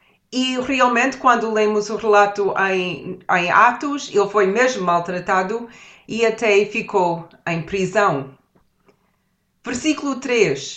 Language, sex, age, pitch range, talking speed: Portuguese, female, 30-49, 180-255 Hz, 110 wpm